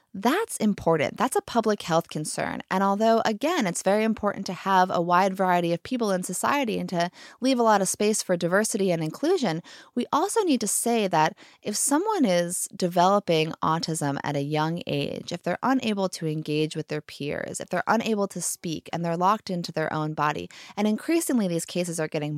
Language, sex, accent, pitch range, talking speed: English, female, American, 160-215 Hz, 200 wpm